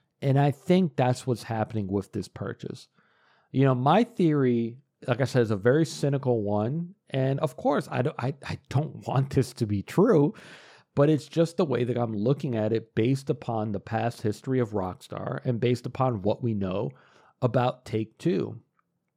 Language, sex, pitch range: English, male, 110-135 Hz